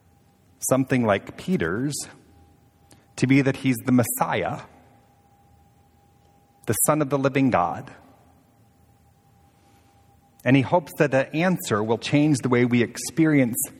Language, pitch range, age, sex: English, 105-145 Hz, 40-59, male